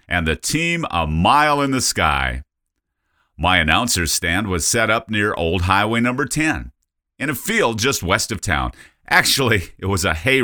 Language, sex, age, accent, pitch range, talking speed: English, male, 50-69, American, 85-125 Hz, 180 wpm